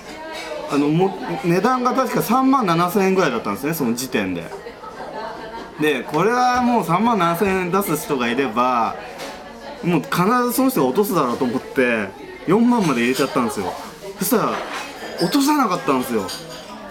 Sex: male